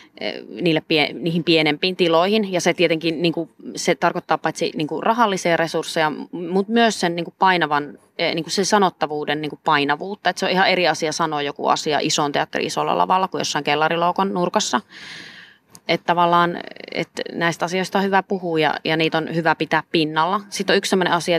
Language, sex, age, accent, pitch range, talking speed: Finnish, female, 20-39, native, 155-180 Hz, 170 wpm